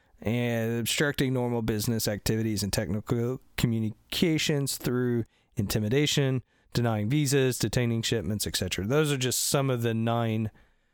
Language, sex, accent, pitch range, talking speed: English, male, American, 110-145 Hz, 120 wpm